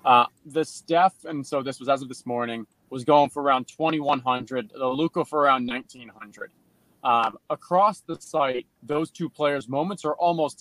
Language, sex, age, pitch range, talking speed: English, male, 20-39, 130-160 Hz, 175 wpm